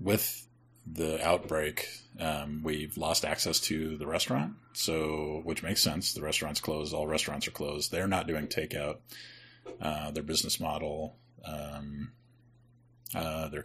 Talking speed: 140 wpm